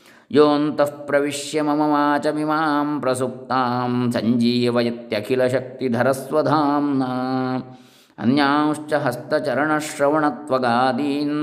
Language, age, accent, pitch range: Kannada, 20-39, native, 120-150 Hz